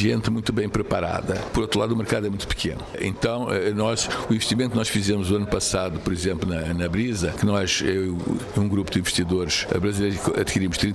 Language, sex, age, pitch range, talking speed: Portuguese, male, 60-79, 110-150 Hz, 195 wpm